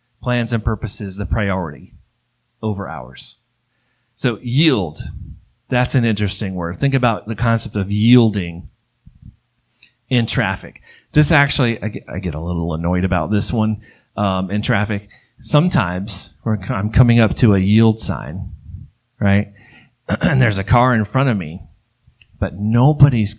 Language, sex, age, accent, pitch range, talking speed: English, male, 30-49, American, 100-130 Hz, 135 wpm